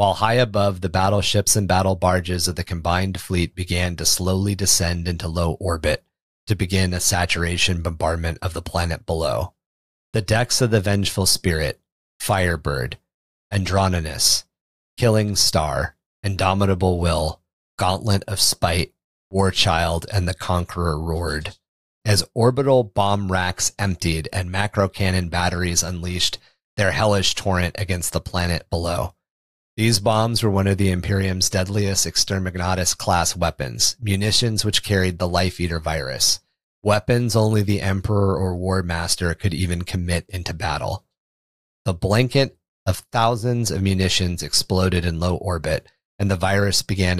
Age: 30-49